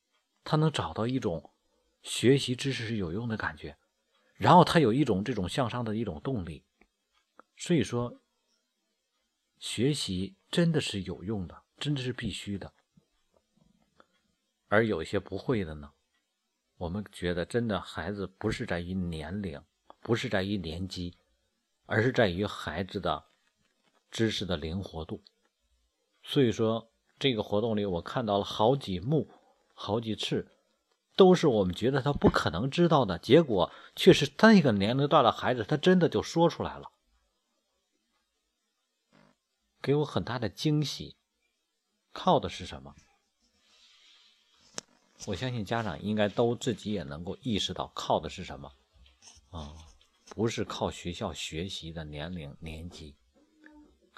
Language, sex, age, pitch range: Chinese, male, 50-69, 85-125 Hz